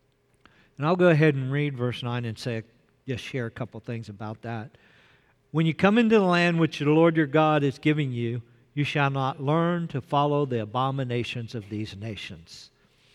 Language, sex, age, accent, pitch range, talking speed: English, male, 50-69, American, 125-160 Hz, 190 wpm